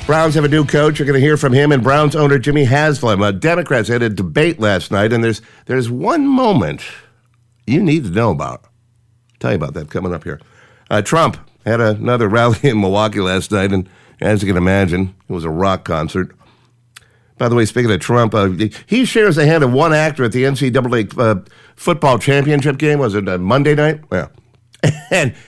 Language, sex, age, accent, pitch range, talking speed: English, male, 50-69, American, 110-150 Hz, 205 wpm